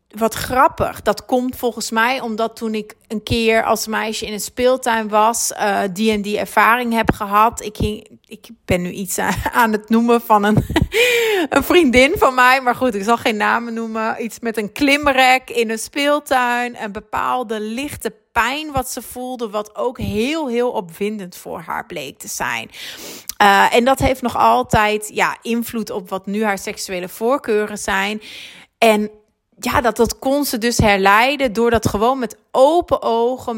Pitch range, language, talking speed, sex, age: 205-250 Hz, Dutch, 175 wpm, female, 30-49